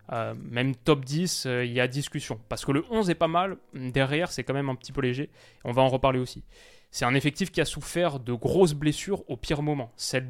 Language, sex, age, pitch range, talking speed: French, male, 20-39, 125-155 Hz, 245 wpm